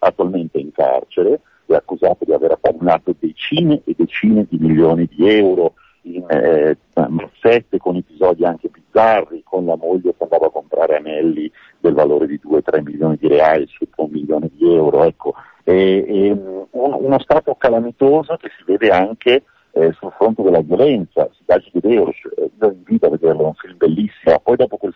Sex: male